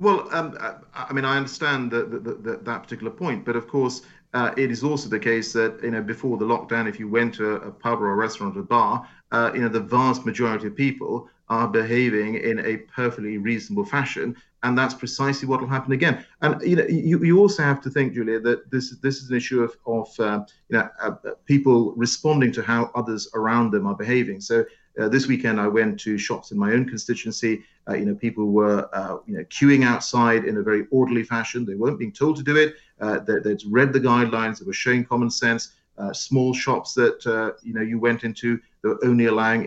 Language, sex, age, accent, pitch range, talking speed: English, male, 40-59, British, 115-135 Hz, 225 wpm